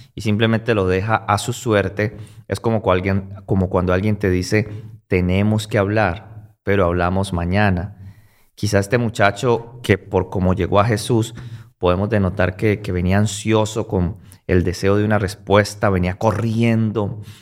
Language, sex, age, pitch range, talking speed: Spanish, male, 30-49, 95-110 Hz, 150 wpm